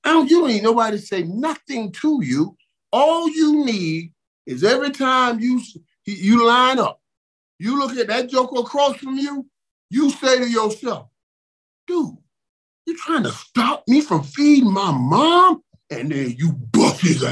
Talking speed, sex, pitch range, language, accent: 165 wpm, male, 160-245 Hz, English, American